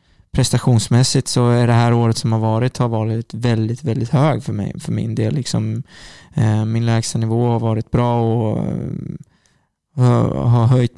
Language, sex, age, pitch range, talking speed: English, male, 20-39, 115-125 Hz, 150 wpm